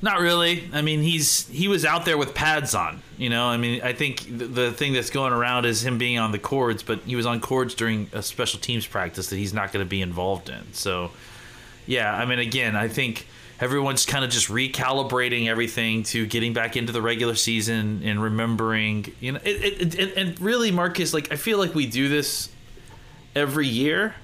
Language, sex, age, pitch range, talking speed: English, male, 20-39, 115-145 Hz, 215 wpm